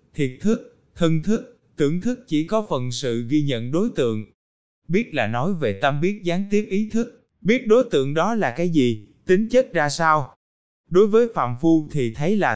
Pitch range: 125-190 Hz